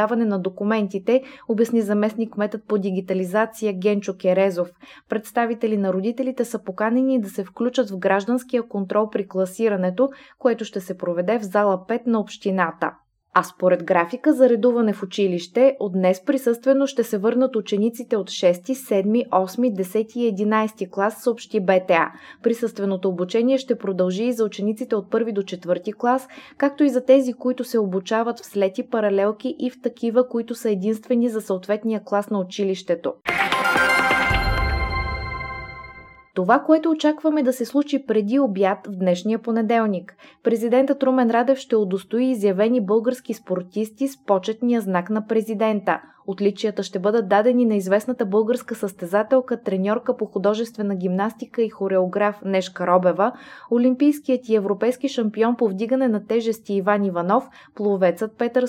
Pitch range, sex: 195-245 Hz, female